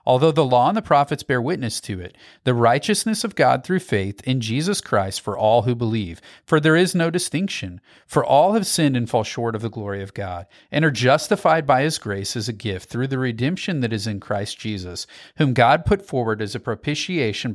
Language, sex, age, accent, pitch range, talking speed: English, male, 40-59, American, 110-165 Hz, 220 wpm